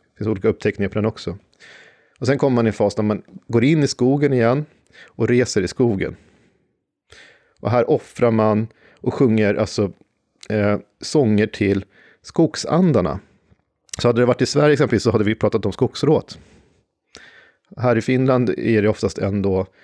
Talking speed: 170 wpm